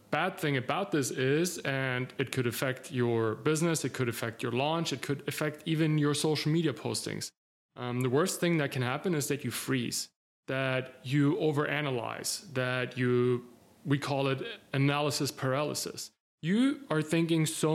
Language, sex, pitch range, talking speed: English, male, 130-160 Hz, 160 wpm